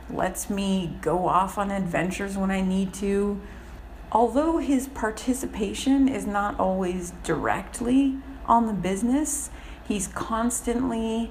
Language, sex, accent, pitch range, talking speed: English, female, American, 170-225 Hz, 115 wpm